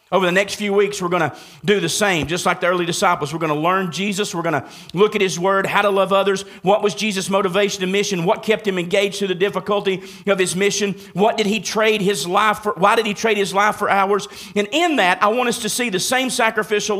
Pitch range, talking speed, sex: 170-215 Hz, 250 wpm, male